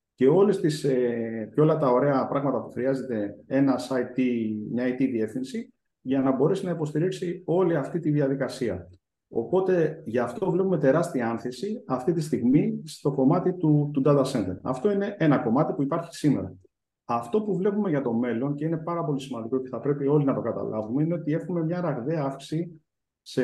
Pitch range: 125-150 Hz